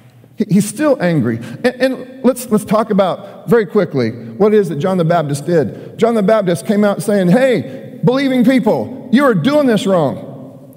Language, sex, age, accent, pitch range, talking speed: English, male, 50-69, American, 150-235 Hz, 185 wpm